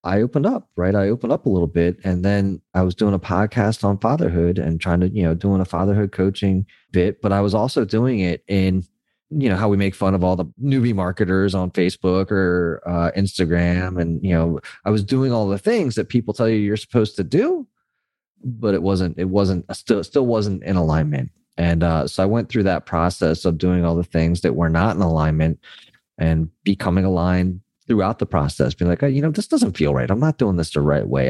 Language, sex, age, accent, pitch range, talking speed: English, male, 30-49, American, 85-105 Hz, 230 wpm